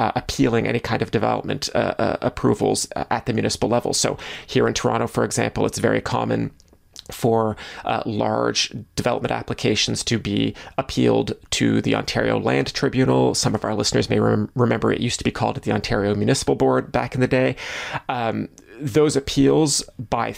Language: English